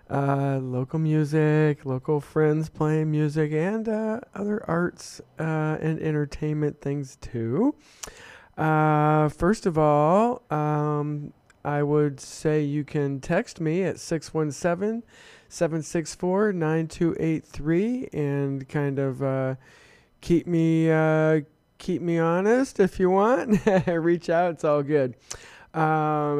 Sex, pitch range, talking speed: male, 140-165 Hz, 110 wpm